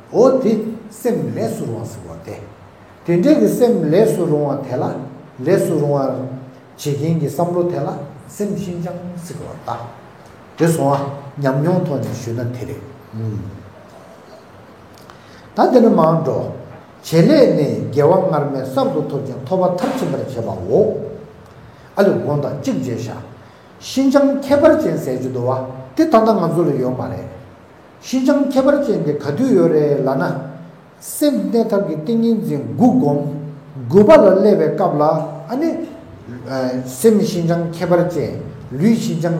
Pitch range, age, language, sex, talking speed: 130-195 Hz, 60-79, English, male, 55 wpm